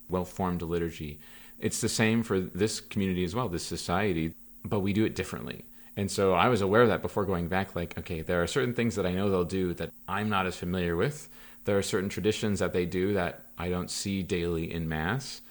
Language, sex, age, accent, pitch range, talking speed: English, male, 30-49, American, 90-110 Hz, 225 wpm